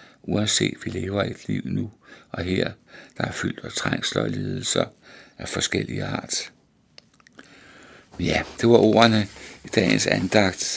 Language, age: Danish, 60-79